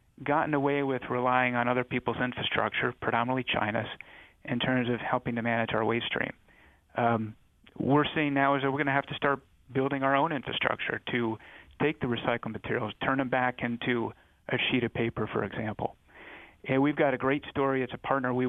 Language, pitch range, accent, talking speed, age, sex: English, 120-140 Hz, American, 195 wpm, 30-49, male